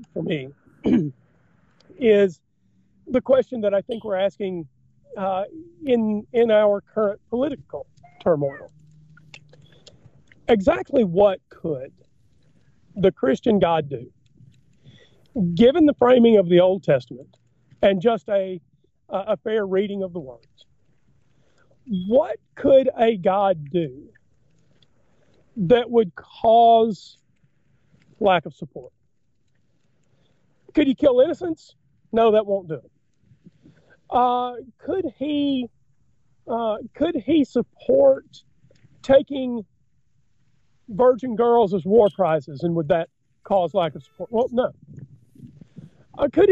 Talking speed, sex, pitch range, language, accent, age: 110 wpm, male, 155-255 Hz, English, American, 40-59